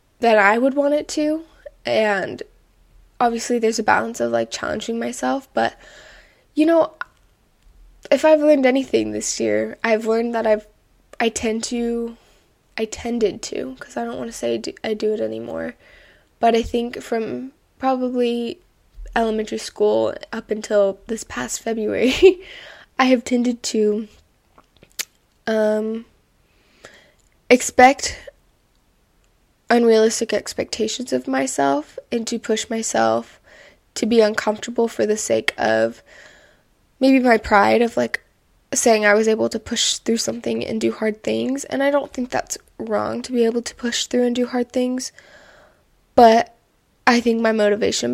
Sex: female